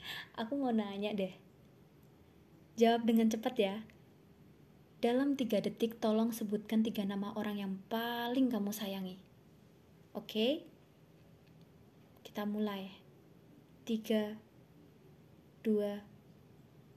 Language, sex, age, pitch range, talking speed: Indonesian, female, 20-39, 190-235 Hz, 90 wpm